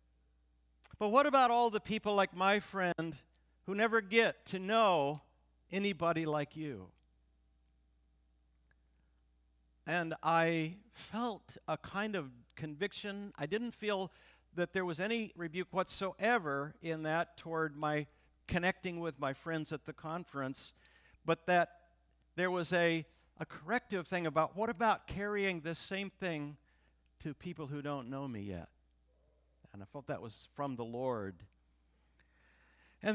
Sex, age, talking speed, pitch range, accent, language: male, 50-69, 135 wpm, 115-190 Hz, American, English